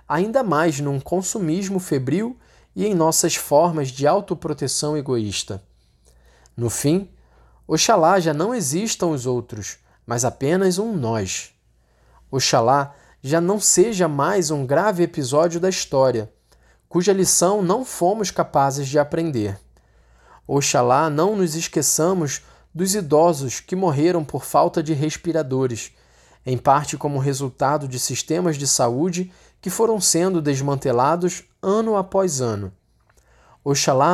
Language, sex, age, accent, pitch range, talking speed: Portuguese, male, 20-39, Brazilian, 135-190 Hz, 125 wpm